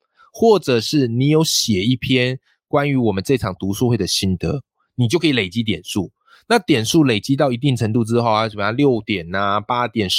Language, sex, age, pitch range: Chinese, male, 20-39, 100-140 Hz